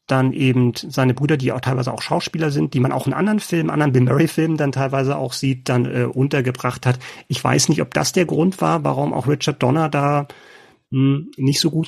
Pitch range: 125-155 Hz